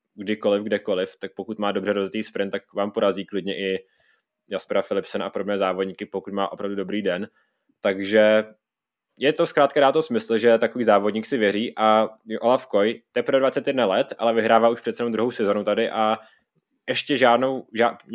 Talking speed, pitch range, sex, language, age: 180 wpm, 105-120 Hz, male, Czech, 20-39